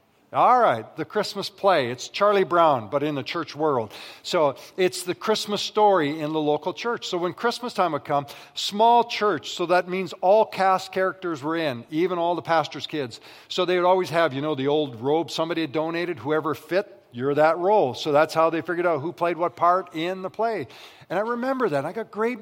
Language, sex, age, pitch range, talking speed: English, male, 50-69, 140-180 Hz, 215 wpm